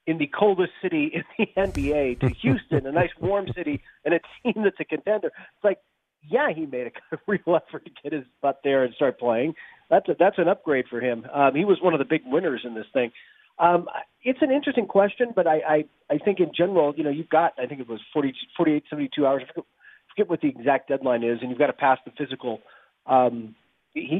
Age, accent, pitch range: 40-59, American, 130-170 Hz